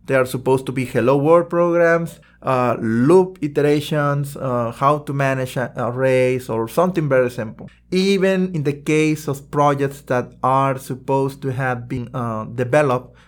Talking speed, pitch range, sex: 155 wpm, 125-155 Hz, male